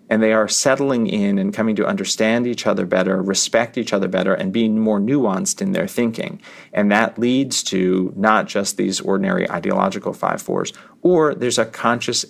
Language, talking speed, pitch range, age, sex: English, 180 wpm, 105-150 Hz, 30-49, male